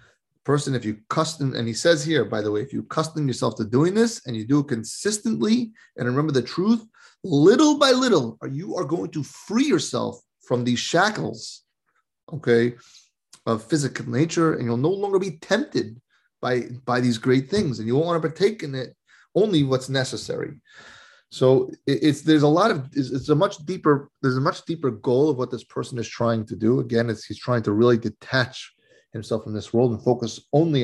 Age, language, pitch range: 30-49, English, 115-150 Hz